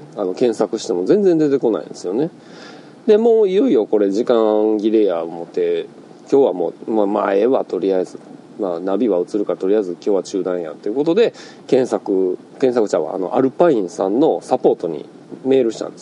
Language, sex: Japanese, male